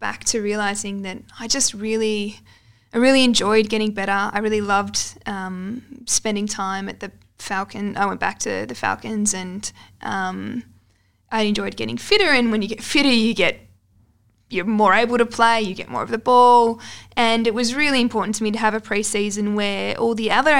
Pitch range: 195-235 Hz